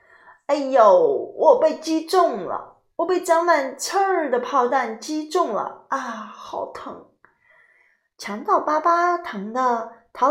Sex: female